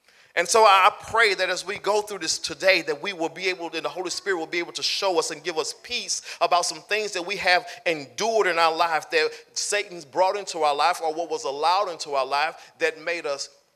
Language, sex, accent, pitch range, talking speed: English, male, American, 170-225 Hz, 245 wpm